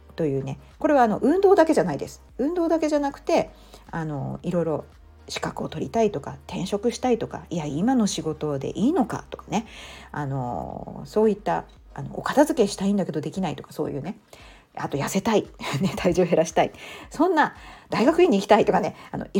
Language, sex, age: Japanese, female, 40-59